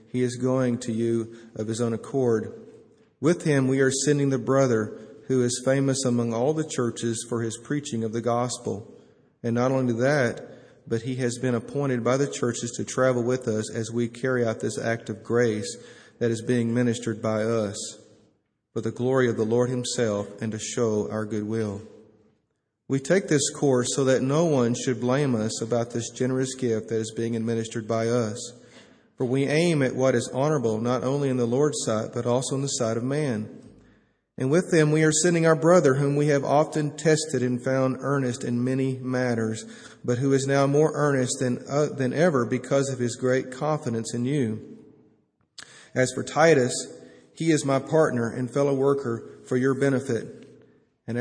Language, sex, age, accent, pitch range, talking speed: English, male, 40-59, American, 115-135 Hz, 190 wpm